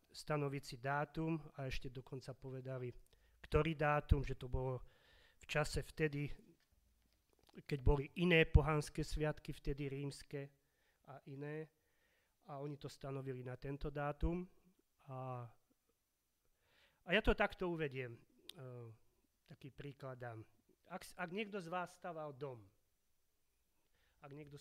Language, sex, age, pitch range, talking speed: Slovak, male, 30-49, 125-165 Hz, 120 wpm